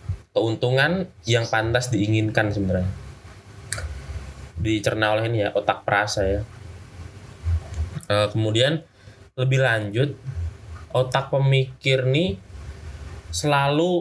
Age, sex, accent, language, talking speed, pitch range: 20-39, male, native, Indonesian, 80 wpm, 100-130 Hz